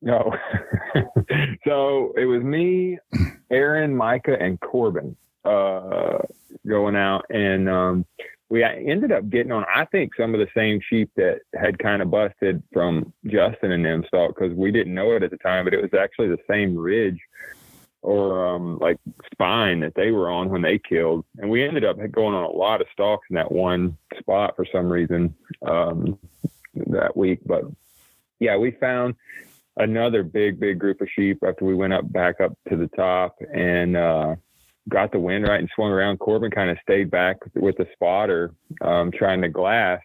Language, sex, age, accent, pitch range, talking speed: English, male, 30-49, American, 90-105 Hz, 185 wpm